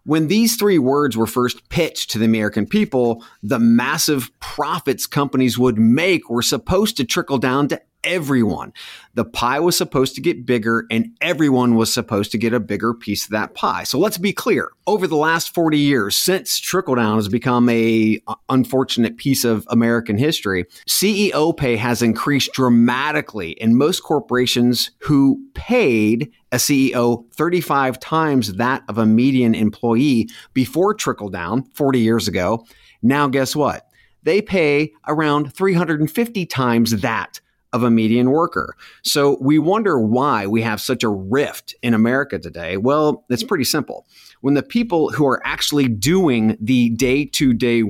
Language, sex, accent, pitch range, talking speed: English, male, American, 115-150 Hz, 160 wpm